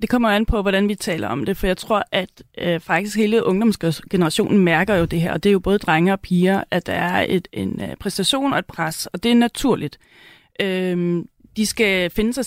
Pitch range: 190-220 Hz